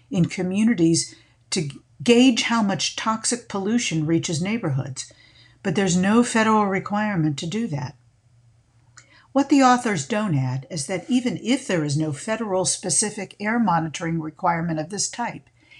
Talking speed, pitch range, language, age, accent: 145 wpm, 135-200 Hz, English, 50-69, American